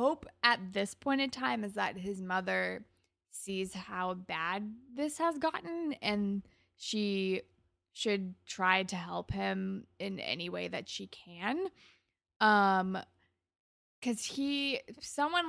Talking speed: 130 wpm